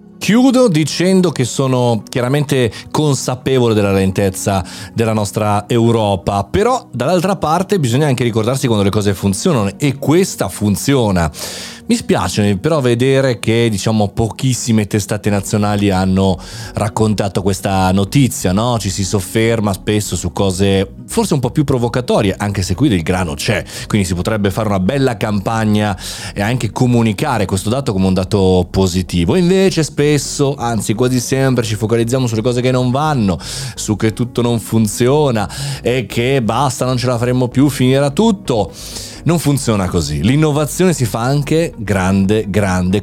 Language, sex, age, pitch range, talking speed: Italian, male, 30-49, 100-140 Hz, 150 wpm